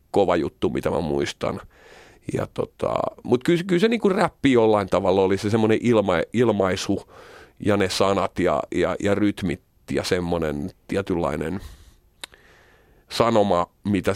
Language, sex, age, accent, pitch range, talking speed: Finnish, male, 40-59, native, 95-115 Hz, 135 wpm